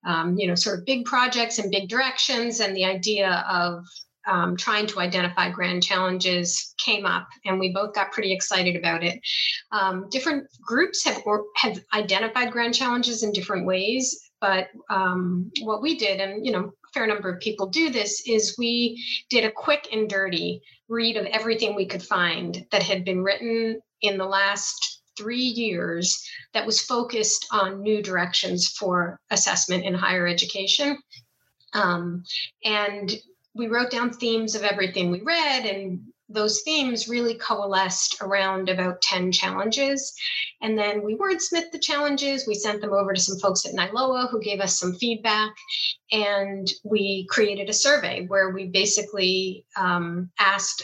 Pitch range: 190-235 Hz